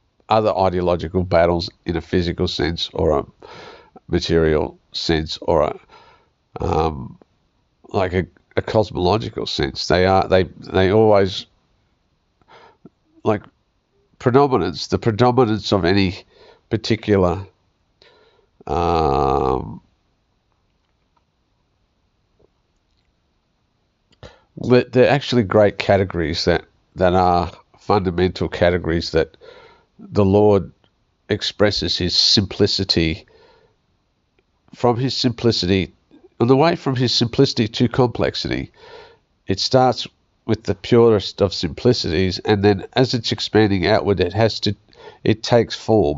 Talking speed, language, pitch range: 100 wpm, English, 90-115 Hz